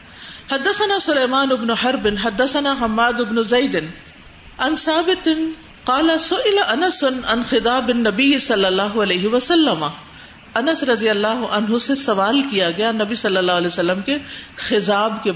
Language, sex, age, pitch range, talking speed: Urdu, female, 50-69, 215-295 Hz, 50 wpm